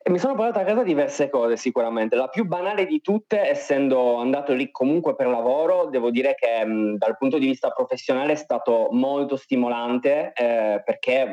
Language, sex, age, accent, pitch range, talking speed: Italian, male, 20-39, native, 110-145 Hz, 185 wpm